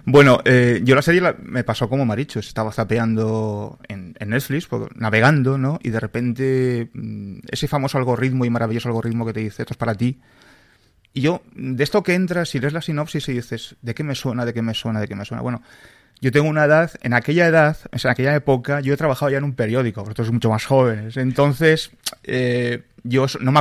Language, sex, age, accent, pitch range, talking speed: Spanish, male, 30-49, Spanish, 110-135 Hz, 220 wpm